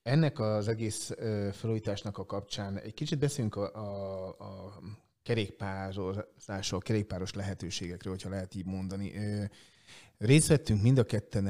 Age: 30-49